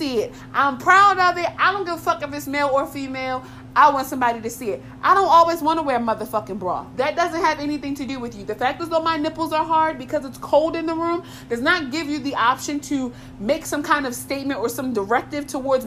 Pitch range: 235-295 Hz